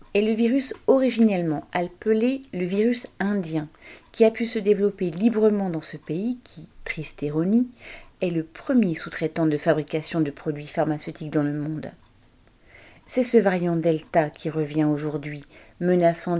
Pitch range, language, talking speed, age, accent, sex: 155-185 Hz, French, 145 wpm, 40-59, French, female